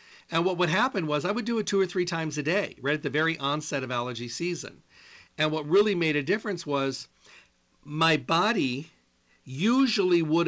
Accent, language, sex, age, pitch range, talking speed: American, English, male, 50-69, 135-175 Hz, 195 wpm